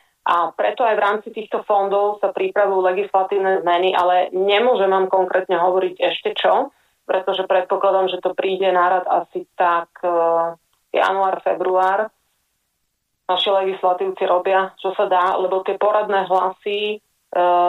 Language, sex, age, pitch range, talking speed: Slovak, female, 30-49, 180-205 Hz, 135 wpm